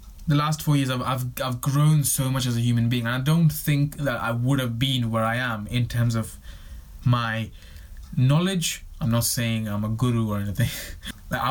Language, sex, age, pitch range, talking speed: English, male, 20-39, 110-140 Hz, 210 wpm